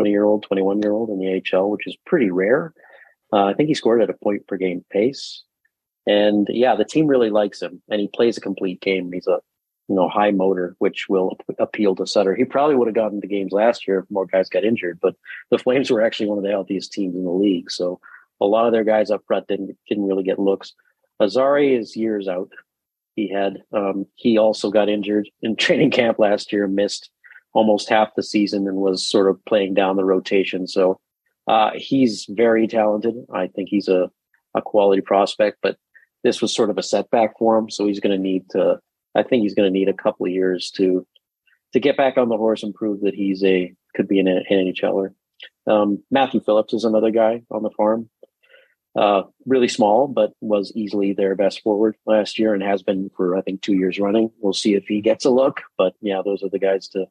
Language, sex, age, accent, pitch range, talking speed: English, male, 40-59, American, 95-110 Hz, 225 wpm